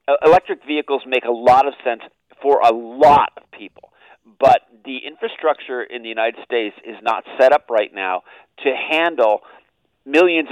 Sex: male